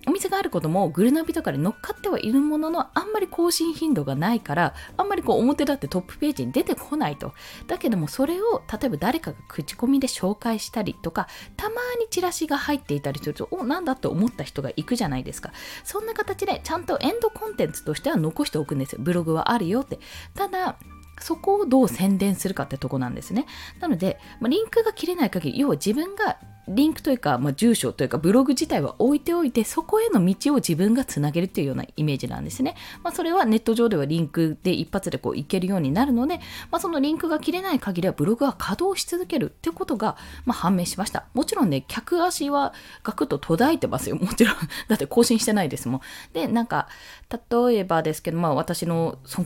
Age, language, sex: 20-39, Japanese, female